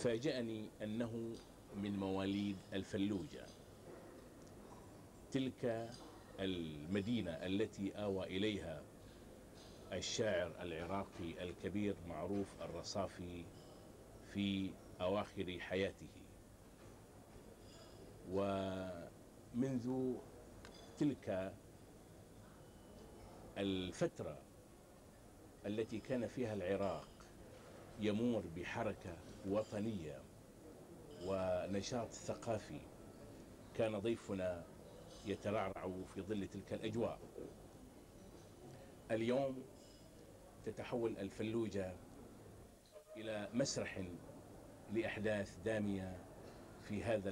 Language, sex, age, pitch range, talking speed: Arabic, male, 50-69, 95-110 Hz, 60 wpm